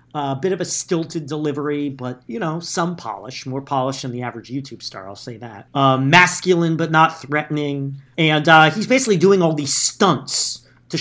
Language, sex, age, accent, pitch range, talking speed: English, male, 40-59, American, 125-160 Hz, 190 wpm